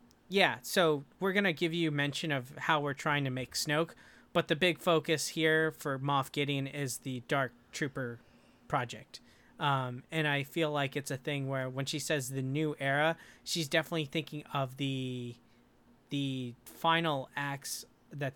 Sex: male